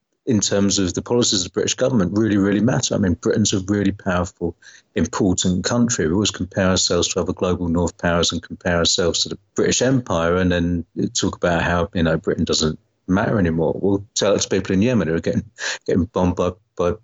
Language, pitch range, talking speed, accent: English, 85-105 Hz, 210 wpm, British